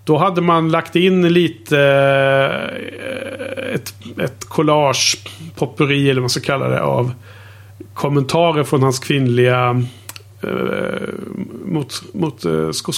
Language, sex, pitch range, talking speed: Swedish, male, 120-165 Hz, 120 wpm